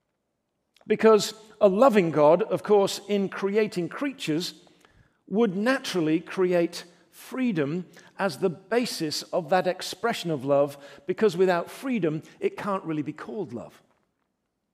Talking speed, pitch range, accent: 120 wpm, 175-220 Hz, British